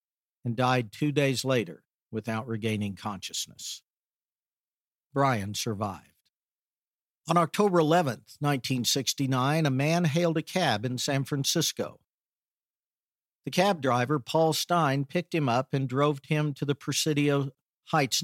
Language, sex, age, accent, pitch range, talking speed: English, male, 50-69, American, 125-150 Hz, 120 wpm